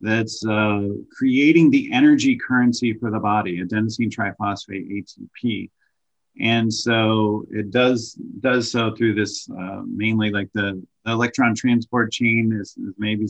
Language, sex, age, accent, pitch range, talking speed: English, male, 40-59, American, 105-120 Hz, 130 wpm